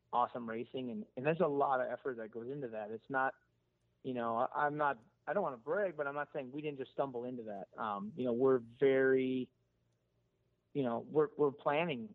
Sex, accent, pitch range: male, American, 120-140 Hz